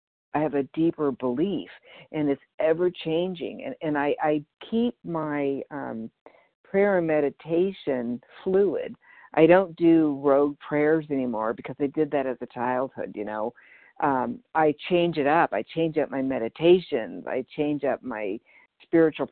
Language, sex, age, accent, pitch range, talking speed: English, female, 50-69, American, 130-165 Hz, 155 wpm